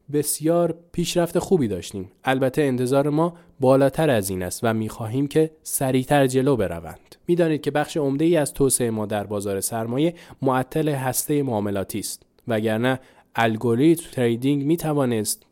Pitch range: 115-160 Hz